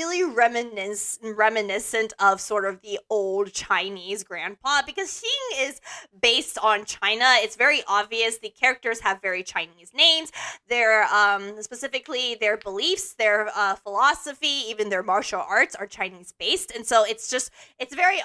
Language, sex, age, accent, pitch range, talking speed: English, female, 20-39, American, 210-265 Hz, 150 wpm